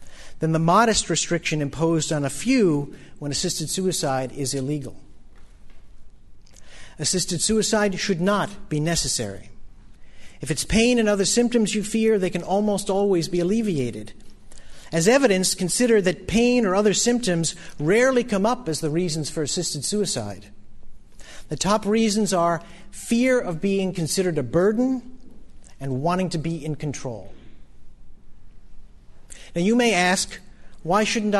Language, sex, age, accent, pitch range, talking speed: English, male, 50-69, American, 145-210 Hz, 140 wpm